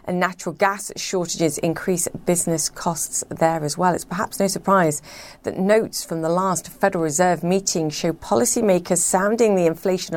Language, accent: English, British